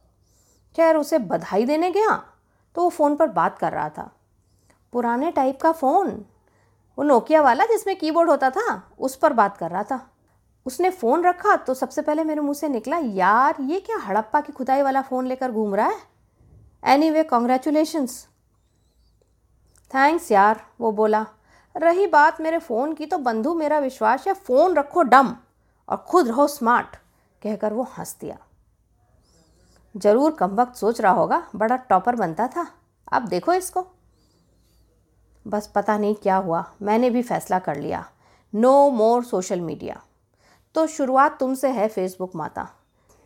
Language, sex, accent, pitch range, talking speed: Hindi, female, native, 215-315 Hz, 155 wpm